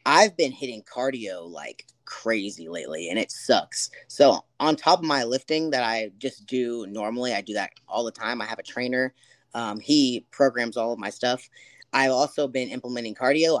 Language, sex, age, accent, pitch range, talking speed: English, female, 20-39, American, 115-140 Hz, 190 wpm